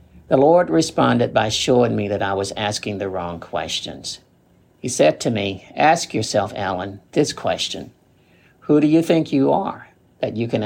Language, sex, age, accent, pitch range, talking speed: English, male, 50-69, American, 100-130 Hz, 175 wpm